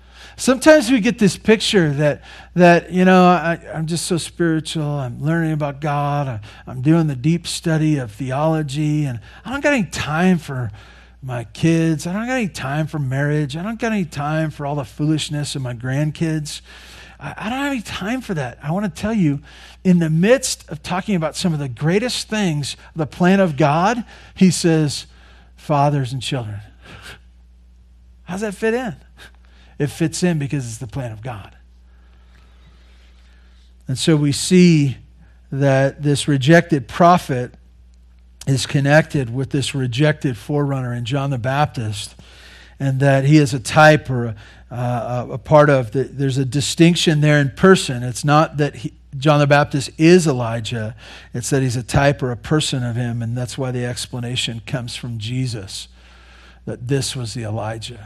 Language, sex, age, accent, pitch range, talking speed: English, male, 40-59, American, 120-160 Hz, 175 wpm